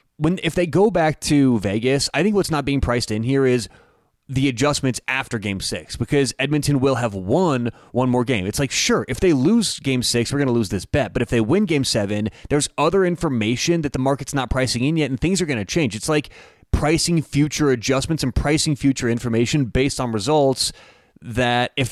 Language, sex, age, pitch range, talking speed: English, male, 30-49, 120-145 Hz, 215 wpm